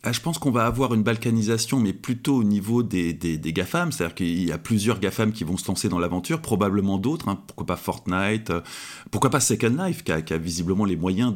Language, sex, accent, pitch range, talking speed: French, male, French, 95-125 Hz, 235 wpm